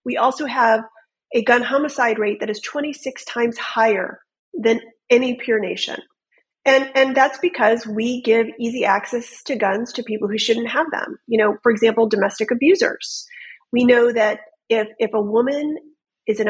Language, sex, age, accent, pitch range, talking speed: English, female, 30-49, American, 215-270 Hz, 170 wpm